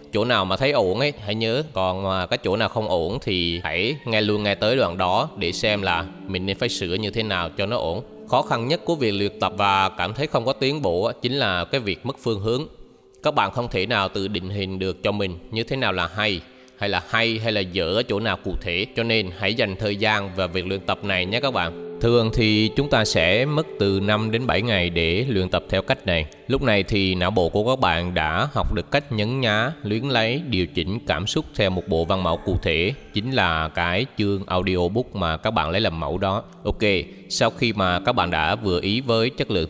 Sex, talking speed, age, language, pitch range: male, 250 wpm, 20-39, Vietnamese, 95-115 Hz